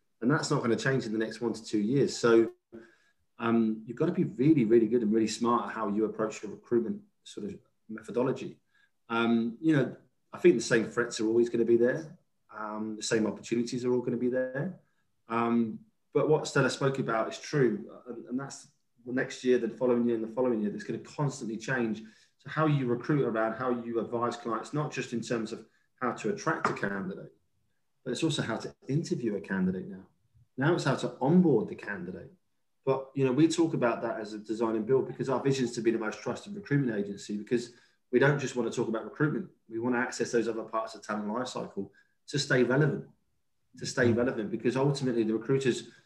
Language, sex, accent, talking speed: English, male, British, 220 wpm